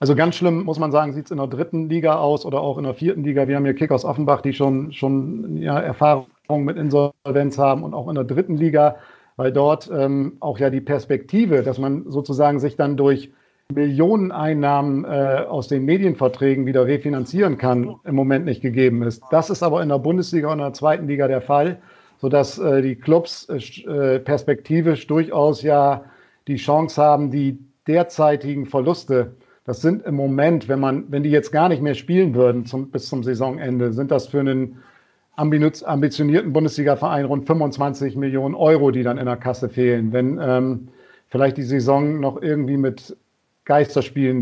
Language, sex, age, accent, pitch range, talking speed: German, male, 50-69, German, 135-150 Hz, 180 wpm